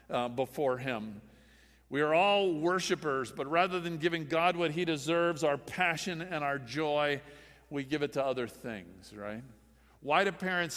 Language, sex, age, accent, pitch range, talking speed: English, male, 50-69, American, 125-190 Hz, 165 wpm